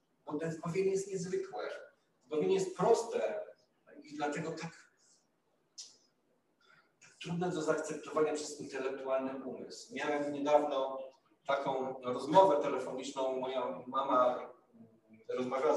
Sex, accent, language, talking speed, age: male, native, Polish, 105 wpm, 40-59